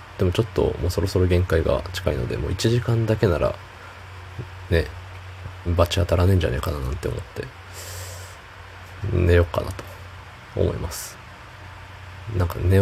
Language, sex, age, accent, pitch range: Japanese, male, 20-39, native, 90-100 Hz